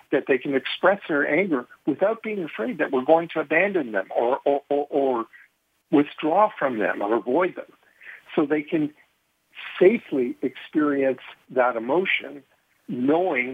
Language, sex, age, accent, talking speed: English, male, 60-79, American, 140 wpm